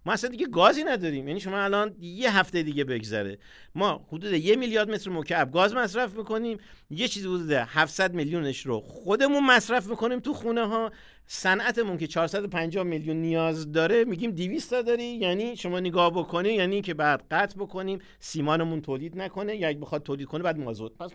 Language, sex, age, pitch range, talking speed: Persian, male, 50-69, 145-195 Hz, 170 wpm